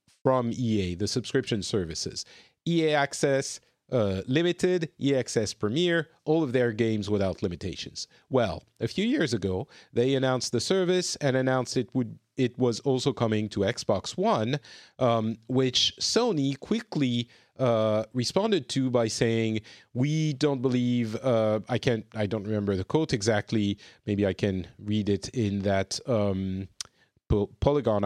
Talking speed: 145 wpm